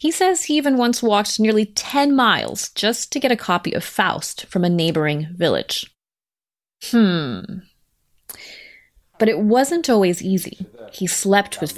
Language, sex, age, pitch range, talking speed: English, female, 30-49, 170-220 Hz, 150 wpm